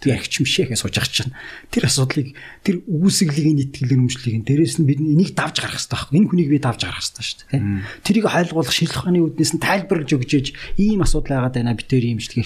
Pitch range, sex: 115-160 Hz, male